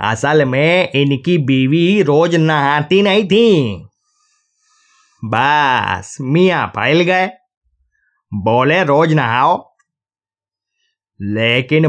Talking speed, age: 80 wpm, 20-39